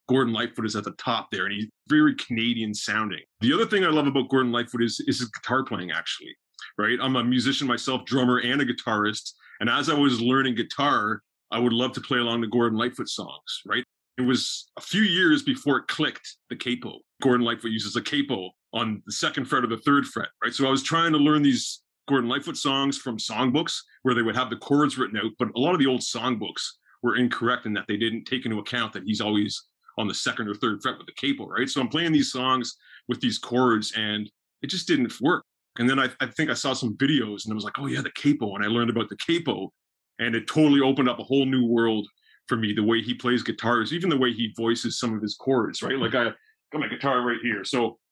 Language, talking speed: English, 245 wpm